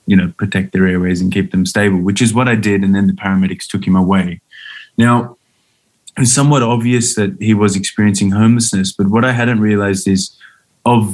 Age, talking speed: 20-39, 200 wpm